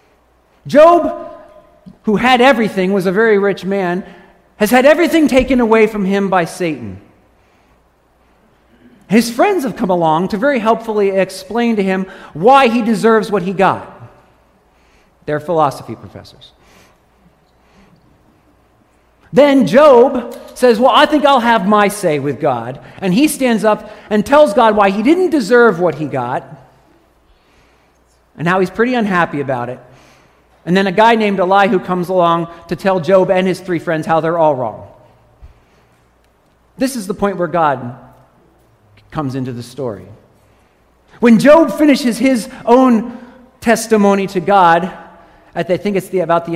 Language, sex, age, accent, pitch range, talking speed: English, male, 50-69, American, 155-230 Hz, 150 wpm